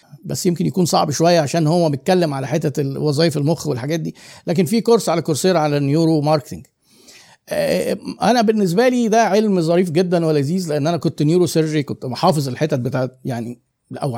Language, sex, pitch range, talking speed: Arabic, male, 150-185 Hz, 175 wpm